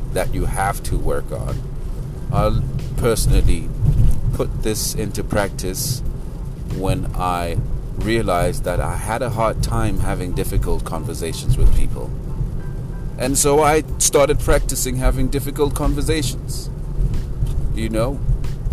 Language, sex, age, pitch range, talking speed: English, male, 30-49, 110-130 Hz, 115 wpm